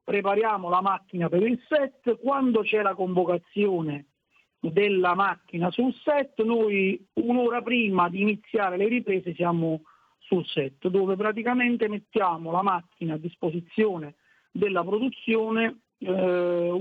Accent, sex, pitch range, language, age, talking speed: native, male, 180-225 Hz, Italian, 50-69, 120 wpm